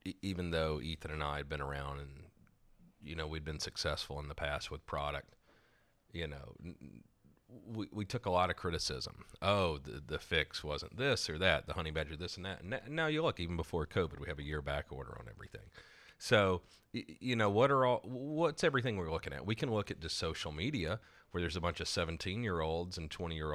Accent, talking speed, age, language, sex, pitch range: American, 220 wpm, 40-59, English, male, 75-95 Hz